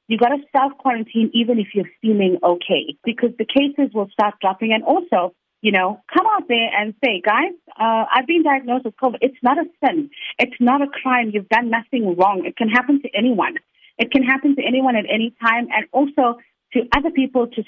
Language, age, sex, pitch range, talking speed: English, 30-49, female, 190-265 Hz, 210 wpm